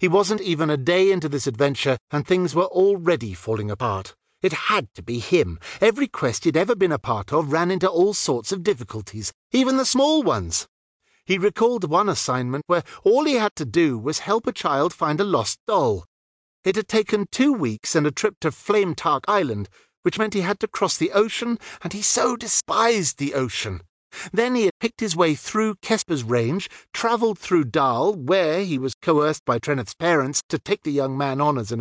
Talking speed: 200 wpm